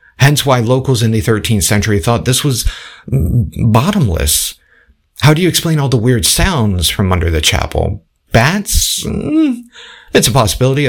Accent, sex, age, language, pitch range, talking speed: American, male, 50-69, English, 95-125 Hz, 150 wpm